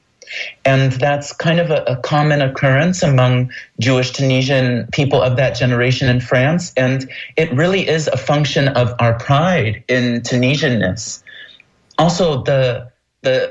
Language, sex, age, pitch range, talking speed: English, male, 30-49, 115-140 Hz, 135 wpm